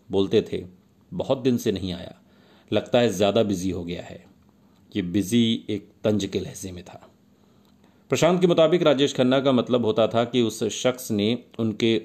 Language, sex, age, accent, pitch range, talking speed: Hindi, male, 40-59, native, 100-125 Hz, 180 wpm